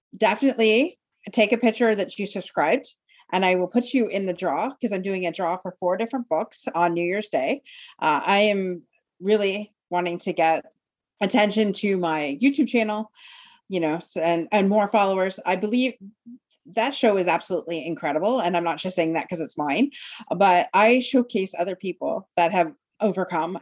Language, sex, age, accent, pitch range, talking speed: English, female, 30-49, American, 165-210 Hz, 180 wpm